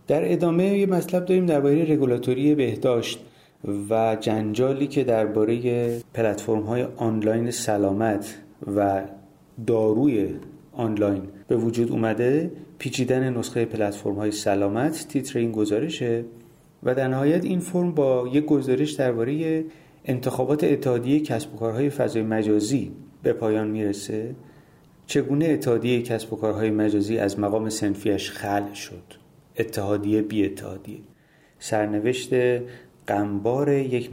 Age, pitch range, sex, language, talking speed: 30-49, 105-140 Hz, male, Persian, 110 wpm